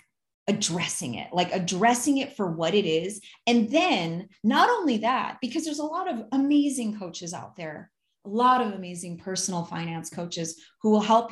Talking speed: 175 wpm